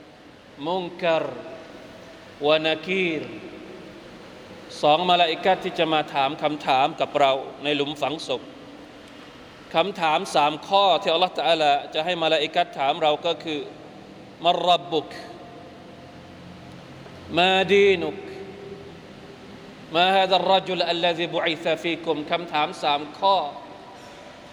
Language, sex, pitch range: Thai, male, 150-185 Hz